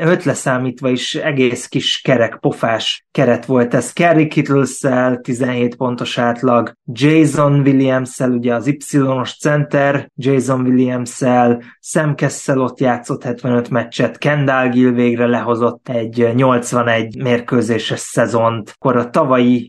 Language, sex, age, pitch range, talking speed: Hungarian, male, 20-39, 120-140 Hz, 115 wpm